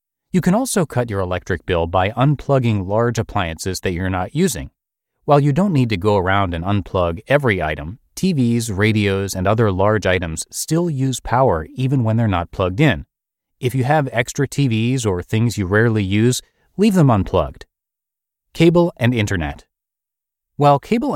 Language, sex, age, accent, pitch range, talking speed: English, male, 30-49, American, 95-130 Hz, 165 wpm